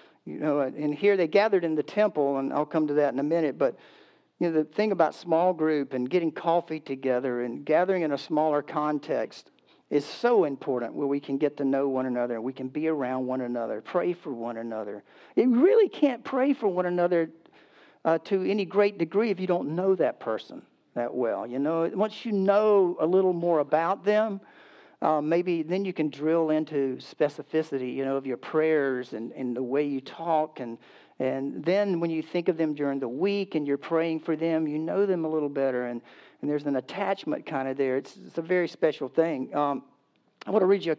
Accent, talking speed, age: American, 215 wpm, 50-69